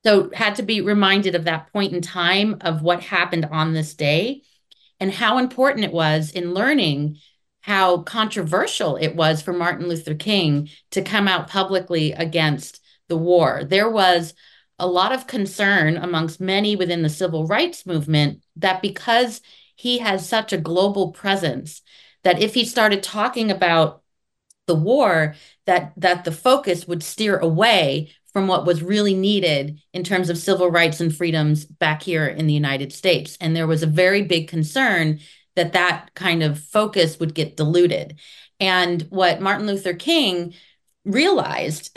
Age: 30-49